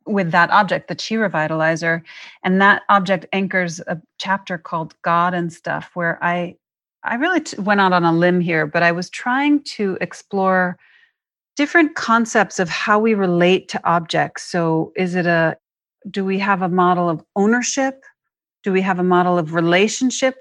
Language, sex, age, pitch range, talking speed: English, female, 40-59, 170-205 Hz, 170 wpm